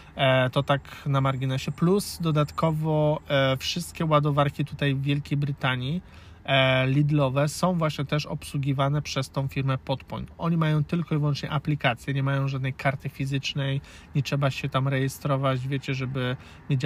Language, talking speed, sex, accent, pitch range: Polish, 140 wpm, male, native, 130-150 Hz